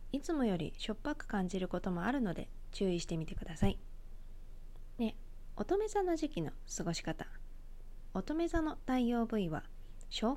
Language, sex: Japanese, female